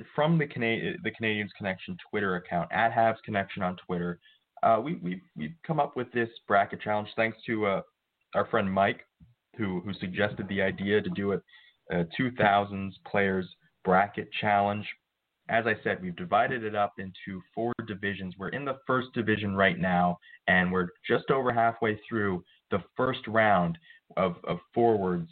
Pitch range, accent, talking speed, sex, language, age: 95-115 Hz, American, 170 wpm, male, English, 20-39